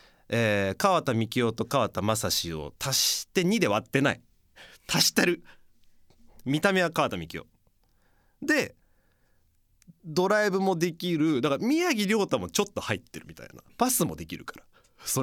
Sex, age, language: male, 30-49, Japanese